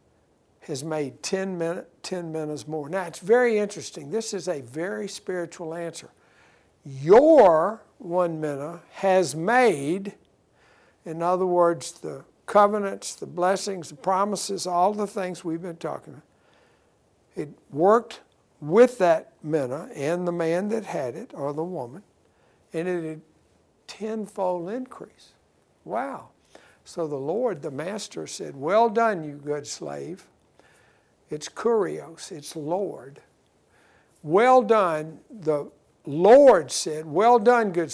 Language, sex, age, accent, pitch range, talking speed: English, male, 60-79, American, 160-205 Hz, 125 wpm